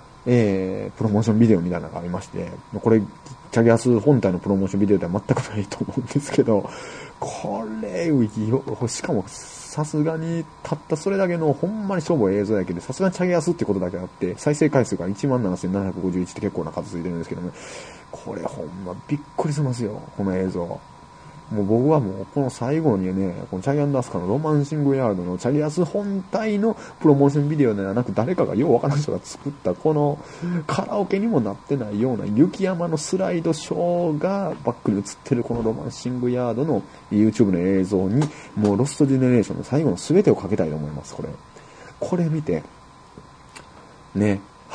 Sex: male